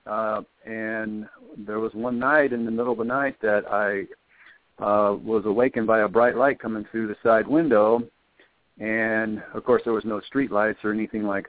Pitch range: 105-120 Hz